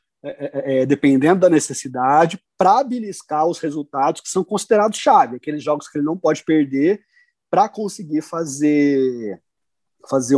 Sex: male